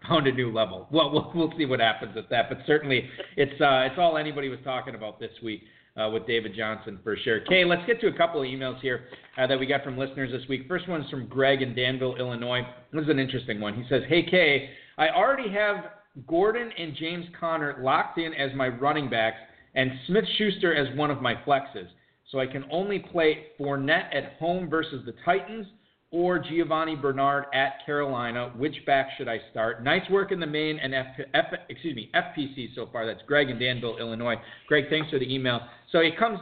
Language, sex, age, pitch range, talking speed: English, male, 40-59, 130-160 Hz, 210 wpm